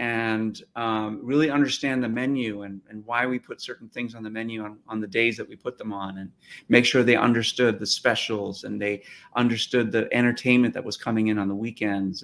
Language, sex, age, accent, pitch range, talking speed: English, male, 30-49, American, 105-125 Hz, 215 wpm